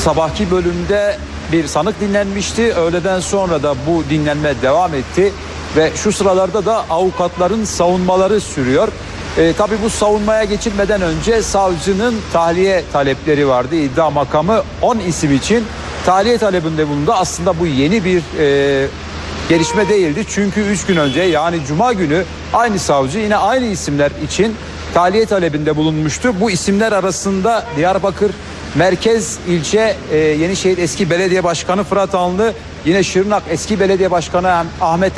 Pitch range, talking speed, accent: 160-205 Hz, 135 wpm, native